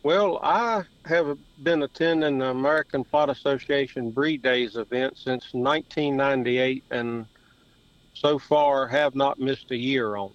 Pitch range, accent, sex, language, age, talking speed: 125-145 Hz, American, male, English, 50-69, 135 wpm